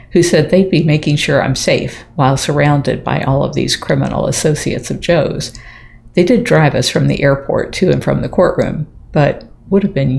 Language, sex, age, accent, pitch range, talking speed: English, female, 50-69, American, 135-170 Hz, 200 wpm